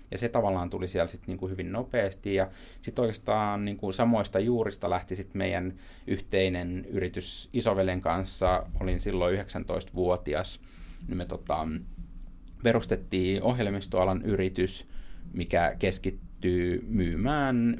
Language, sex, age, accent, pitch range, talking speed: Finnish, male, 30-49, native, 90-105 Hz, 115 wpm